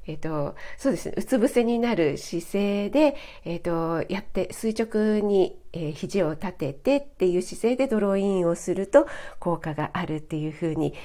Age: 40-59